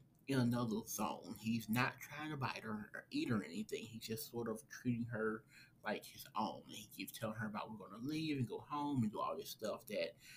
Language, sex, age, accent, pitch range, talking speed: English, male, 20-39, American, 115-135 Hz, 245 wpm